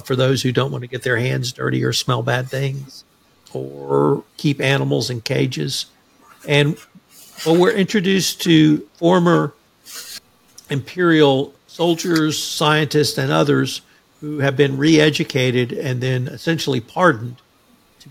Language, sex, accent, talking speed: English, male, American, 130 wpm